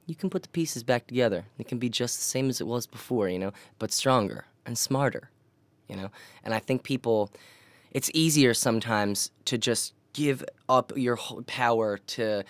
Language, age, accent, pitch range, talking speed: English, 10-29, American, 105-125 Hz, 185 wpm